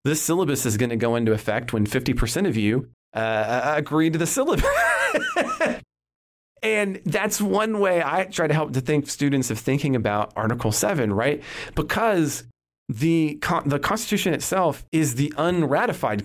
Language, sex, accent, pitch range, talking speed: English, male, American, 110-145 Hz, 155 wpm